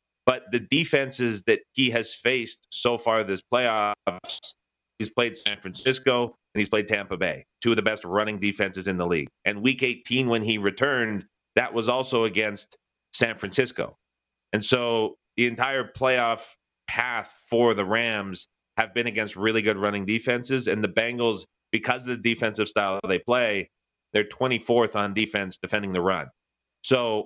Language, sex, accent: English, male, American